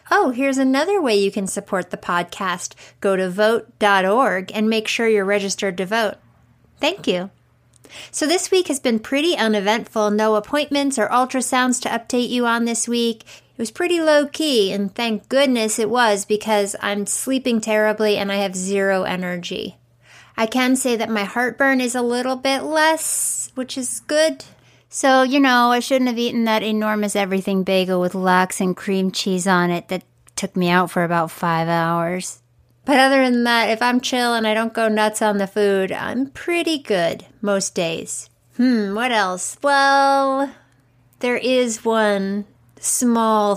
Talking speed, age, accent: 170 wpm, 30-49, American